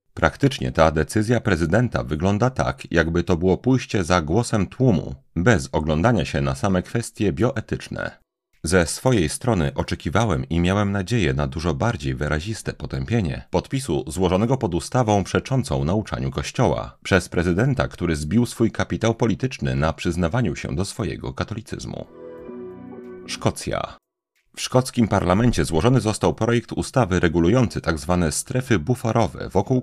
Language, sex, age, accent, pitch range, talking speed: Polish, male, 40-59, native, 80-115 Hz, 130 wpm